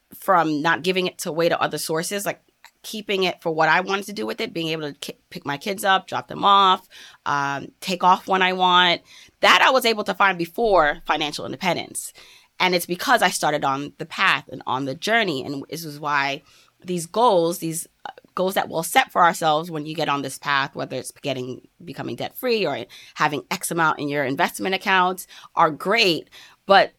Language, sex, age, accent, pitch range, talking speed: English, female, 20-39, American, 155-190 Hz, 205 wpm